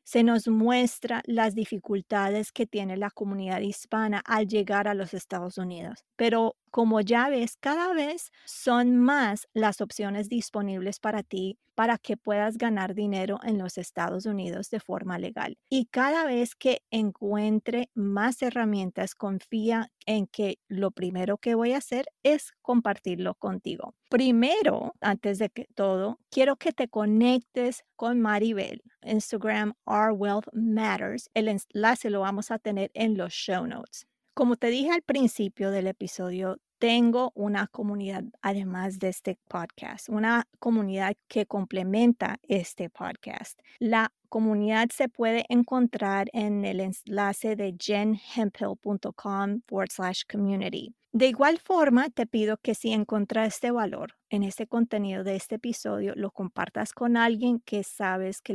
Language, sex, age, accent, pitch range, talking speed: English, female, 30-49, American, 200-240 Hz, 145 wpm